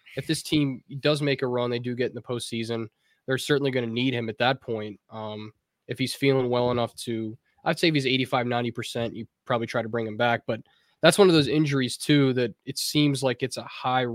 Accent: American